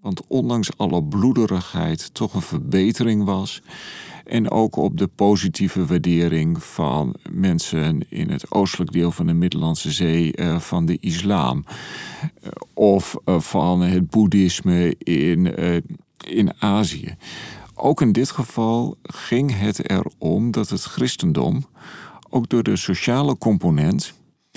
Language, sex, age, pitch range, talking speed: Dutch, male, 40-59, 90-125 Hz, 125 wpm